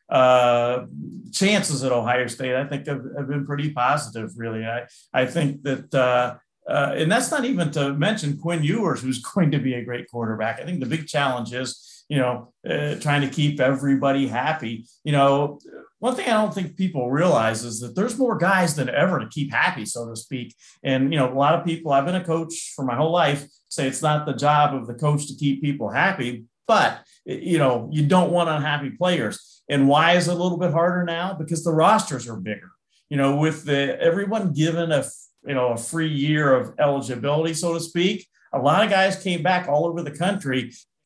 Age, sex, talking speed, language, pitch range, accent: 50-69, male, 210 wpm, English, 130-170 Hz, American